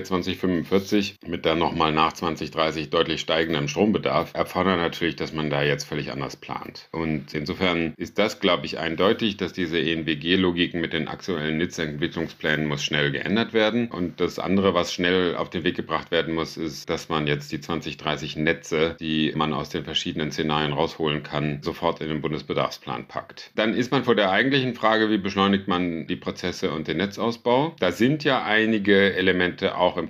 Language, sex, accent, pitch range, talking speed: German, male, German, 80-100 Hz, 175 wpm